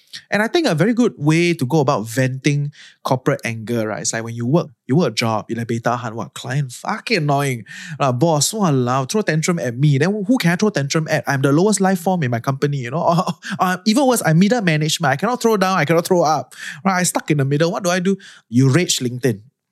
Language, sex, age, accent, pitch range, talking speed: English, male, 20-39, Malaysian, 130-180 Hz, 250 wpm